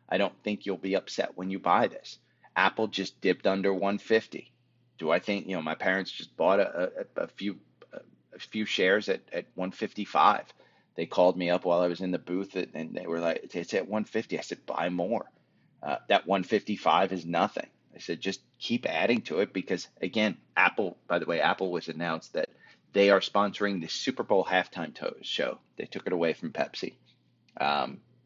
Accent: American